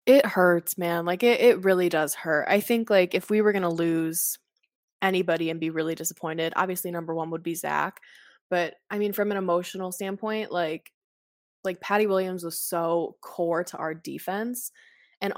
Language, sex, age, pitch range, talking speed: English, female, 20-39, 165-200 Hz, 180 wpm